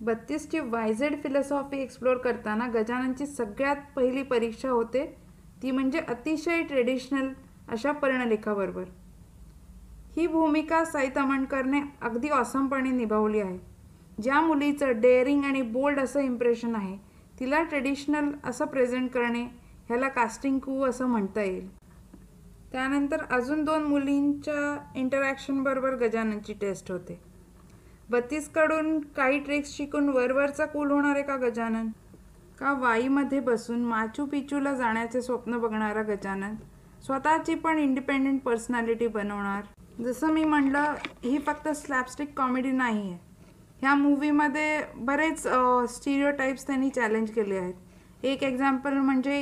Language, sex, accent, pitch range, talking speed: Marathi, female, native, 235-285 Hz, 110 wpm